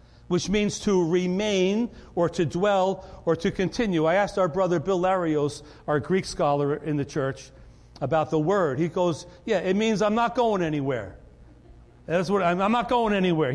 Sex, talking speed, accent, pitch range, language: male, 175 wpm, American, 165-225 Hz, English